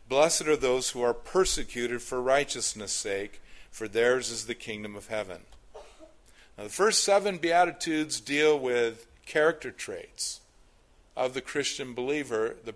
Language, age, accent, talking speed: English, 50-69, American, 140 wpm